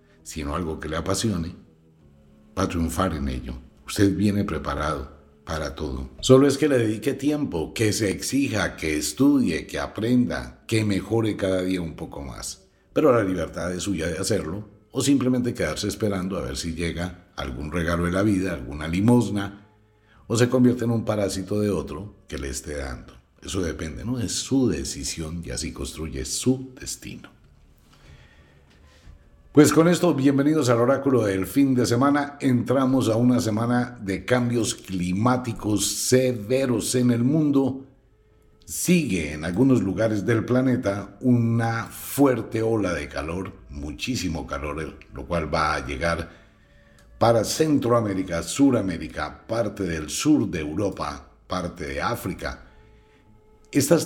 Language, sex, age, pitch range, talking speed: Spanish, male, 60-79, 80-120 Hz, 145 wpm